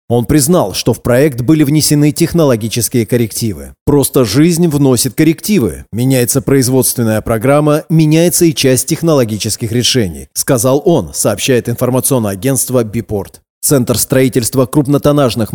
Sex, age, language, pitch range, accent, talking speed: male, 30-49, Russian, 115-150 Hz, native, 115 wpm